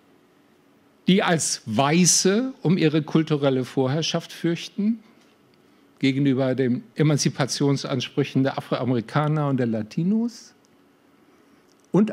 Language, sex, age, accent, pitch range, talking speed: German, male, 50-69, German, 135-180 Hz, 85 wpm